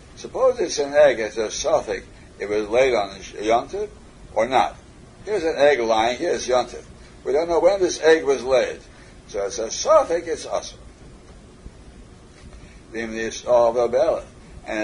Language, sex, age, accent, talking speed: English, male, 60-79, American, 145 wpm